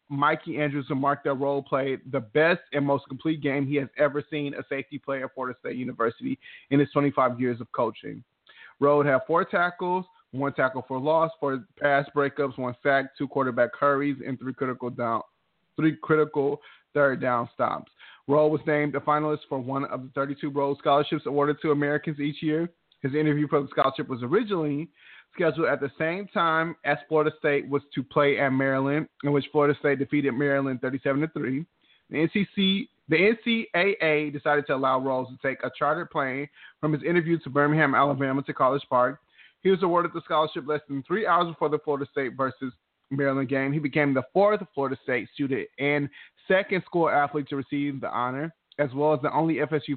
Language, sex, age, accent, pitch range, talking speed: English, male, 30-49, American, 135-155 Hz, 190 wpm